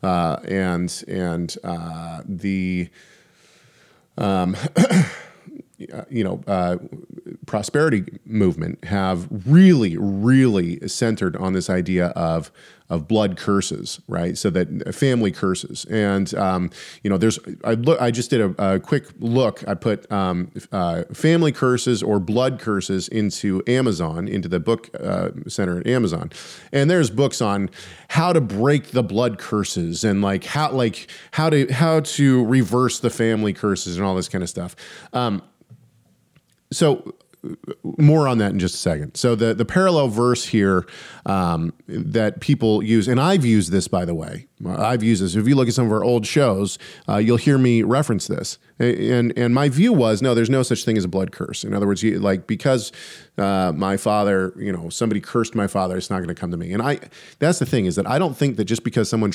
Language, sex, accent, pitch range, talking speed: English, male, American, 95-125 Hz, 185 wpm